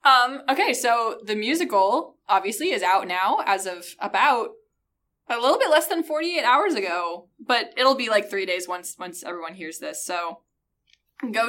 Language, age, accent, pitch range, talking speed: English, 10-29, American, 180-270 Hz, 170 wpm